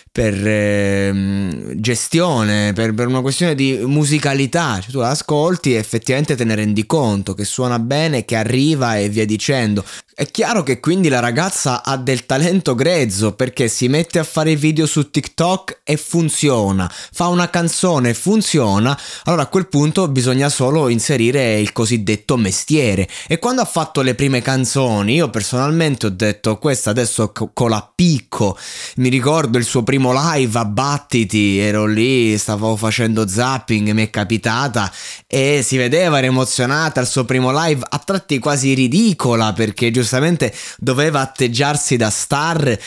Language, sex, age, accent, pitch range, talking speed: Italian, male, 20-39, native, 110-150 Hz, 155 wpm